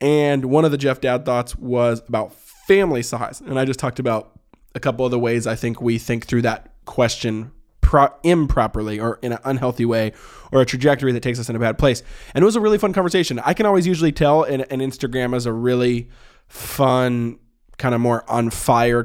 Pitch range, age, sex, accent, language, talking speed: 115-145 Hz, 20-39, male, American, English, 215 wpm